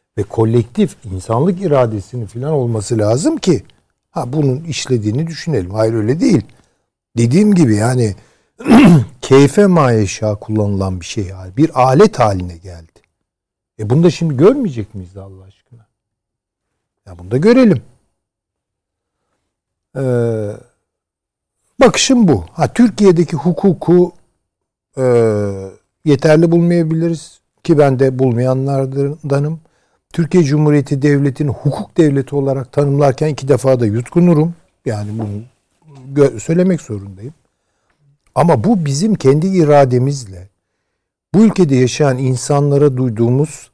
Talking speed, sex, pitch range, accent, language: 105 wpm, male, 105-150 Hz, native, Turkish